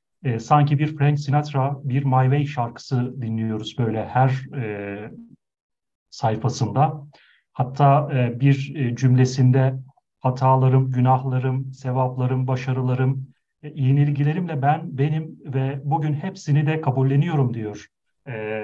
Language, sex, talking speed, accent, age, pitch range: Turkish, male, 100 wpm, native, 40-59, 130-145 Hz